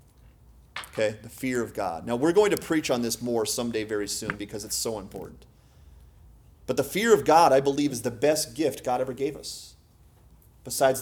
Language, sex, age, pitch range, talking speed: English, male, 30-49, 105-145 Hz, 190 wpm